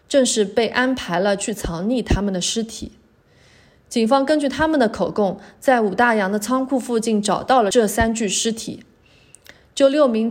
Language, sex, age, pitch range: Chinese, female, 30-49, 195-260 Hz